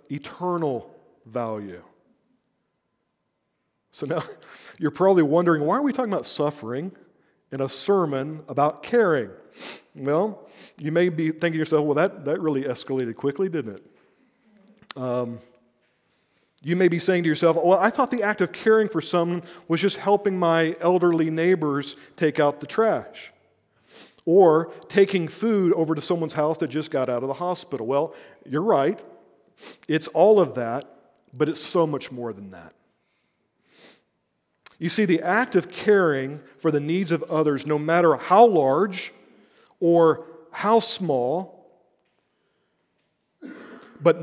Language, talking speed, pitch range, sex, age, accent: English, 145 wpm, 150-200 Hz, male, 50-69, American